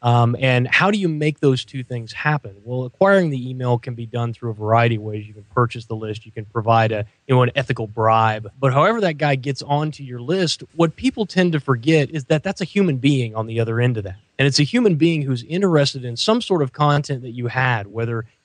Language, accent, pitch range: English, American, 120-150 Hz